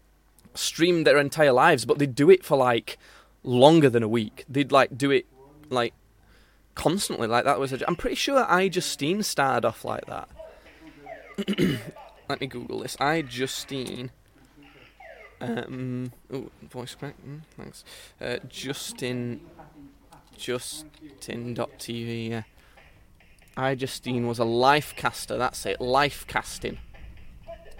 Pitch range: 120-155 Hz